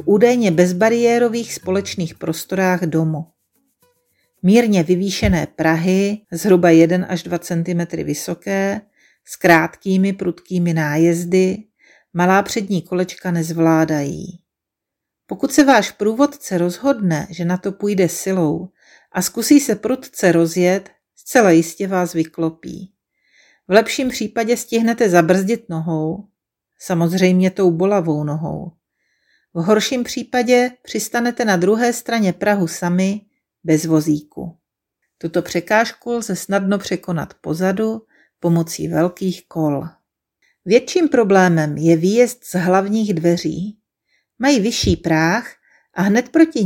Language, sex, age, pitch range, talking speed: Czech, female, 40-59, 170-230 Hz, 110 wpm